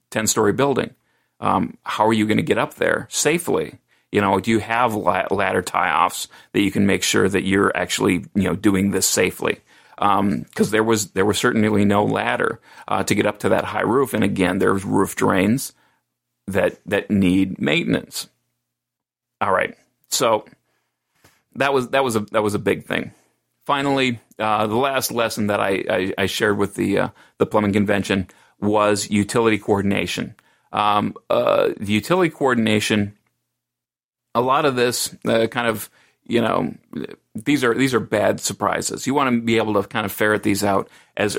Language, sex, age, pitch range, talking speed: English, male, 40-59, 100-110 Hz, 180 wpm